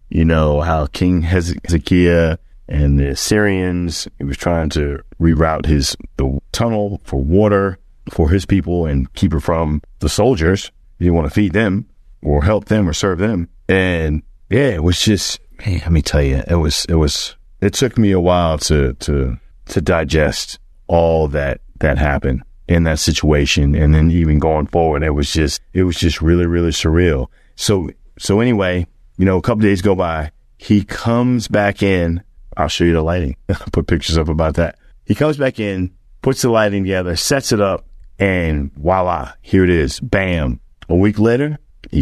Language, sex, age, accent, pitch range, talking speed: English, male, 30-49, American, 70-95 Hz, 185 wpm